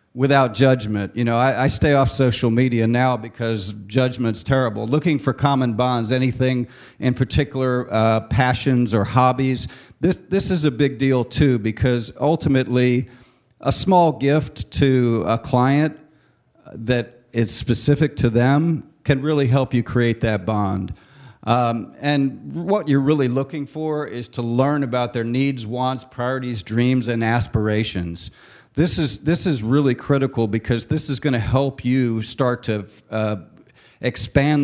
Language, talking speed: English, 150 wpm